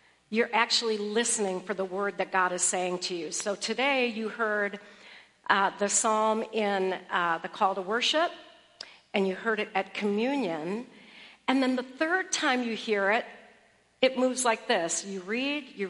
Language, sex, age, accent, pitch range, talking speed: English, female, 50-69, American, 190-230 Hz, 175 wpm